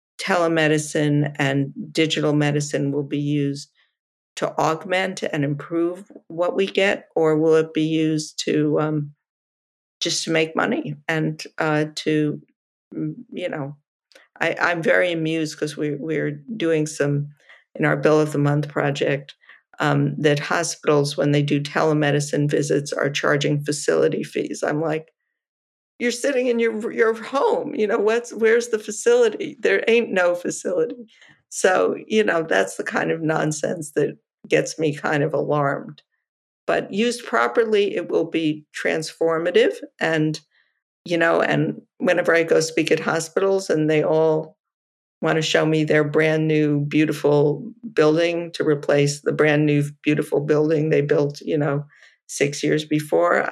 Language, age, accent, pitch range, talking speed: English, 50-69, American, 145-180 Hz, 145 wpm